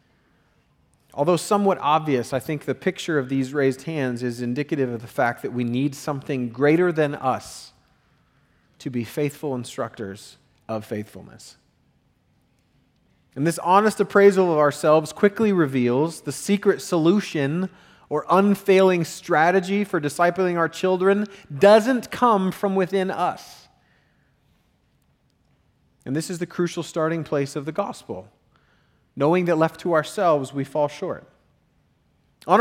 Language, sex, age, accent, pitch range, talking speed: English, male, 30-49, American, 140-195 Hz, 130 wpm